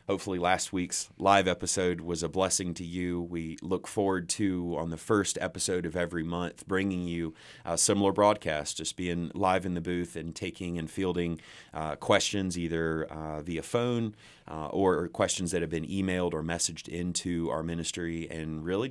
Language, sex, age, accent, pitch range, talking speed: English, male, 30-49, American, 80-95 Hz, 180 wpm